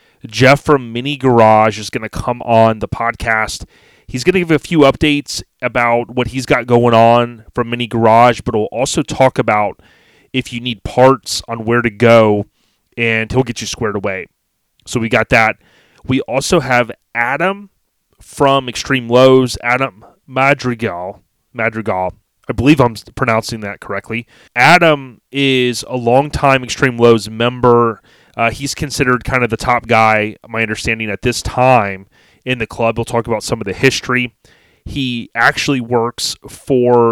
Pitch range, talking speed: 110-130 Hz, 160 wpm